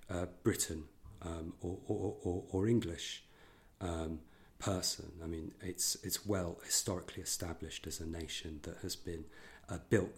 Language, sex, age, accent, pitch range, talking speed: English, male, 40-59, British, 80-100 Hz, 130 wpm